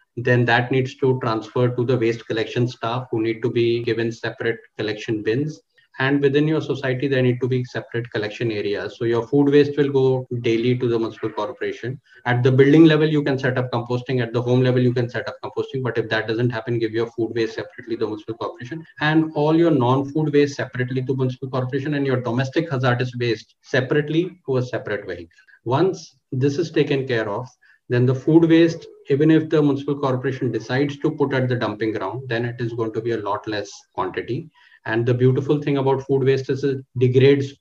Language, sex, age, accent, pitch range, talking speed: English, male, 20-39, Indian, 115-140 Hz, 215 wpm